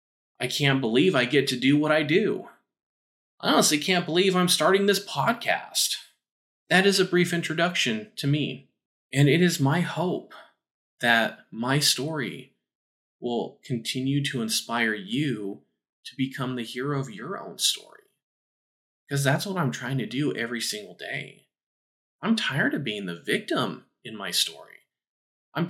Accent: American